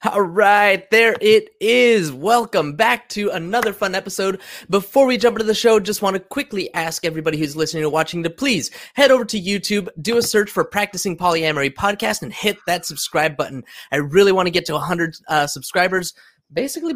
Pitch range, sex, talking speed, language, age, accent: 155-225 Hz, male, 195 wpm, English, 20-39, American